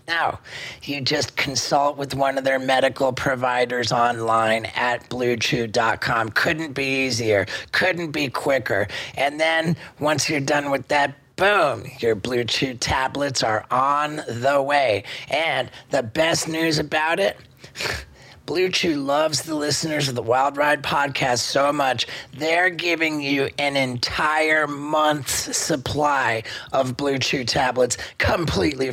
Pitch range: 120-145 Hz